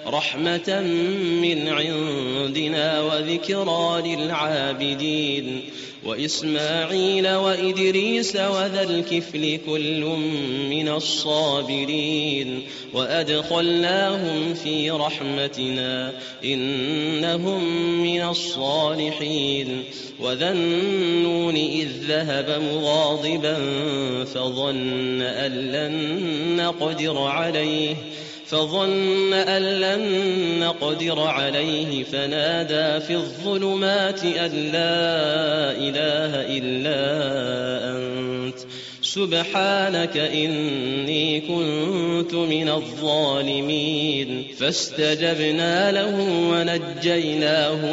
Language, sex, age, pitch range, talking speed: Arabic, male, 30-49, 140-170 Hz, 60 wpm